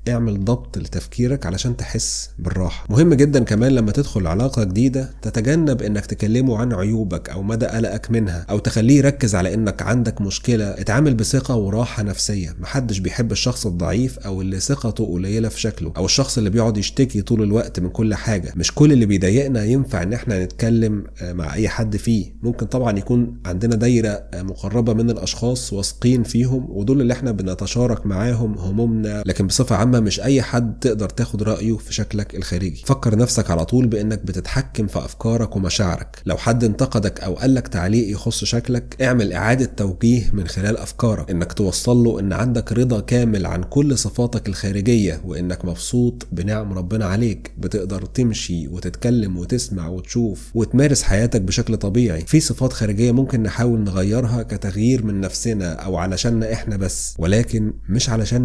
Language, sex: Arabic, male